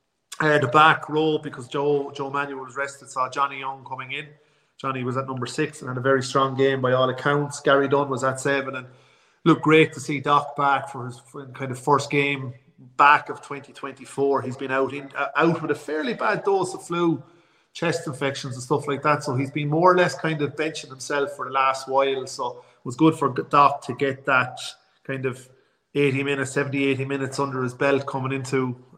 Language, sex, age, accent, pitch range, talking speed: English, male, 30-49, Irish, 130-145 Hz, 210 wpm